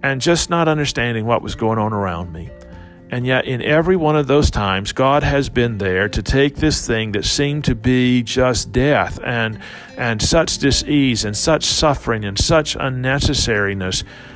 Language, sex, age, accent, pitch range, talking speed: English, male, 50-69, American, 120-180 Hz, 175 wpm